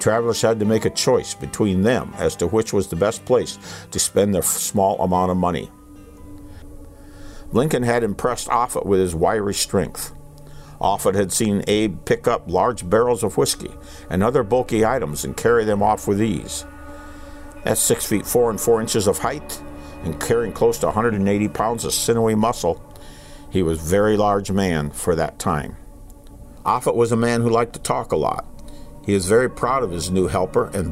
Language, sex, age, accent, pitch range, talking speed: English, male, 50-69, American, 90-115 Hz, 185 wpm